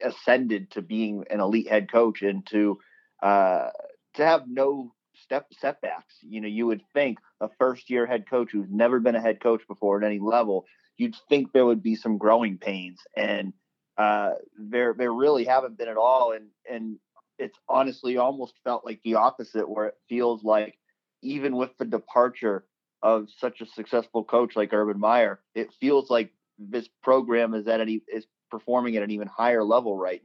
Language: English